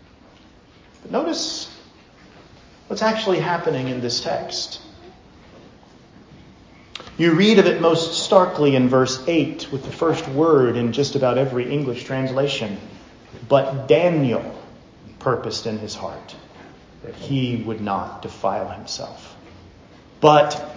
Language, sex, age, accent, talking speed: English, male, 40-59, American, 115 wpm